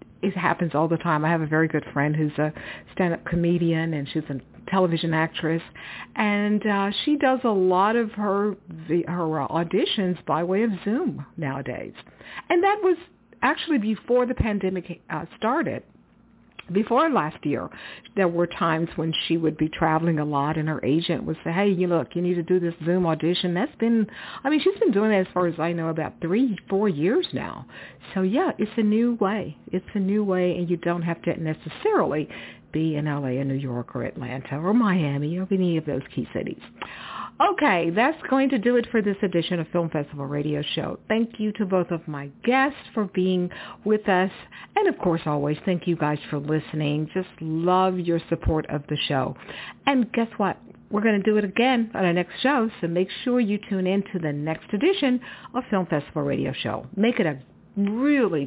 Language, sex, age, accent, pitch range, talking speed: English, female, 50-69, American, 160-215 Hz, 200 wpm